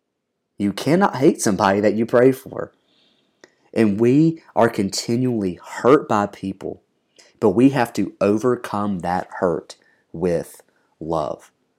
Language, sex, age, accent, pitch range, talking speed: English, male, 30-49, American, 90-105 Hz, 120 wpm